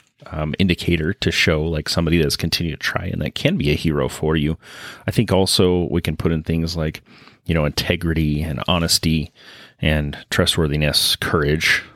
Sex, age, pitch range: male, 30-49, 80-95 Hz